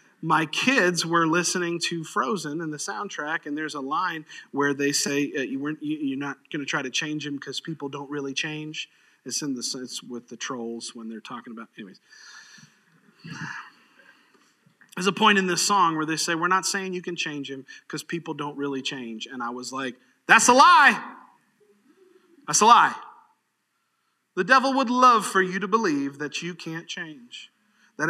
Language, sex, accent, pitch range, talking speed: English, male, American, 155-225 Hz, 190 wpm